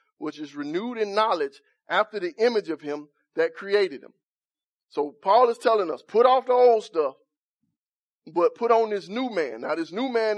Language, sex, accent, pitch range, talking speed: English, male, American, 205-305 Hz, 190 wpm